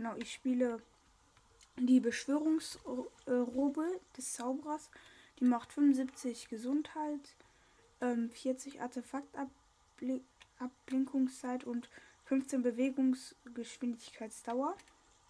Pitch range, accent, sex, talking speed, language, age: 240-275 Hz, German, female, 65 wpm, German, 10-29